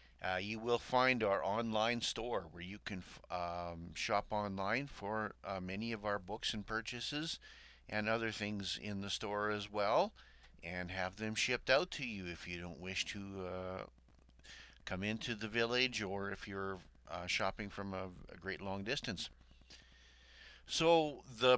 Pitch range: 95-115 Hz